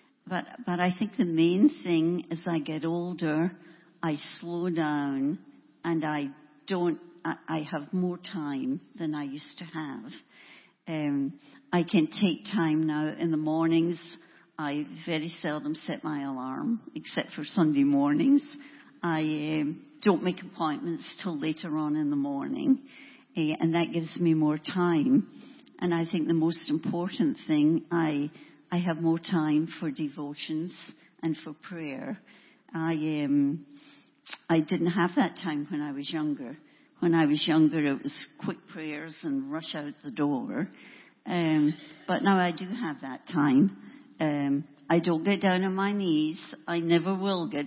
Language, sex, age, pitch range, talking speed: English, female, 60-79, 155-190 Hz, 155 wpm